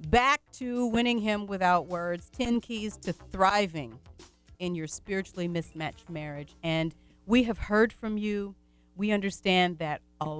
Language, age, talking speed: English, 40-59, 145 wpm